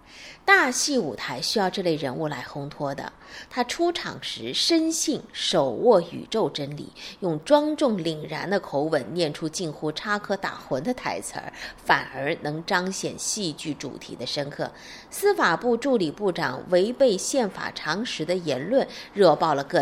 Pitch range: 155-235 Hz